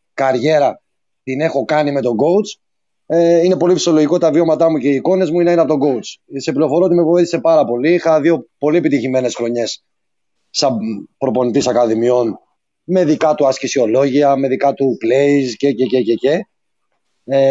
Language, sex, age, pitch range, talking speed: Greek, male, 30-49, 130-170 Hz, 170 wpm